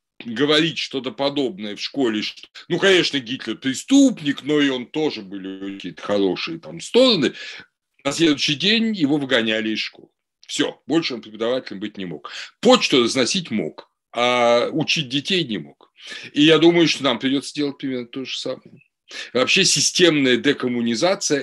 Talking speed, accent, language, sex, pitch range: 150 wpm, native, Russian, male, 125-170 Hz